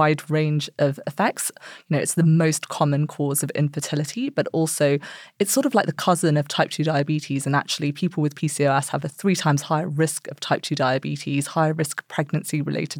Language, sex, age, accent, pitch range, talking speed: English, female, 20-39, British, 150-175 Hz, 205 wpm